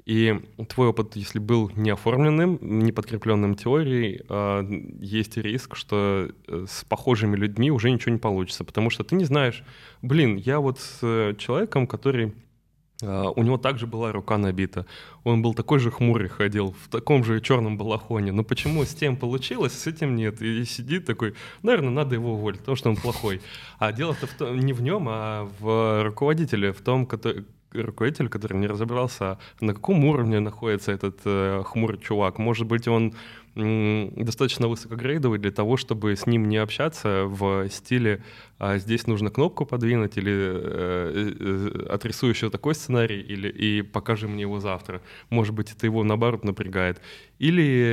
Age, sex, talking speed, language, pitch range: 20-39, male, 165 wpm, Russian, 105-125 Hz